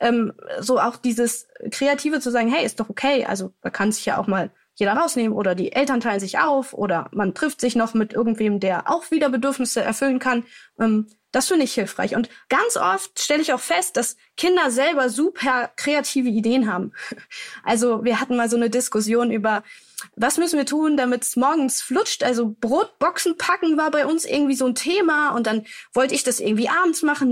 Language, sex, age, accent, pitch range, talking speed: German, female, 20-39, German, 235-295 Hz, 200 wpm